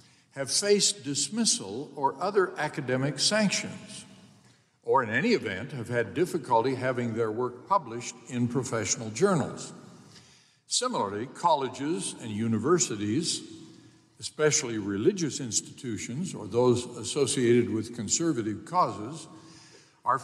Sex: male